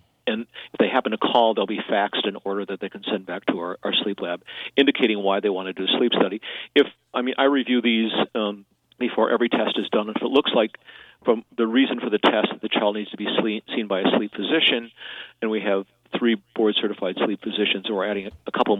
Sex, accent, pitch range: male, American, 100-115 Hz